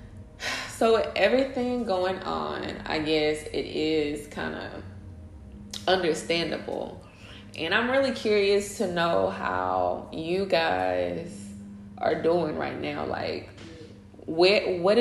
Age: 20-39